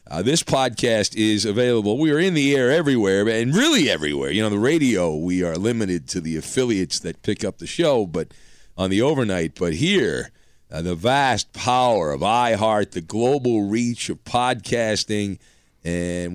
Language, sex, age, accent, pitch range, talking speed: English, male, 40-59, American, 100-125 Hz, 175 wpm